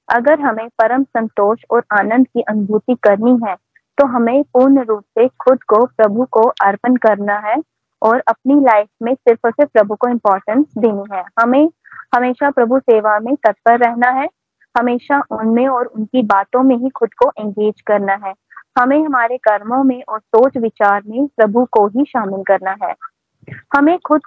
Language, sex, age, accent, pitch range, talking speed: Hindi, female, 20-39, native, 215-270 Hz, 175 wpm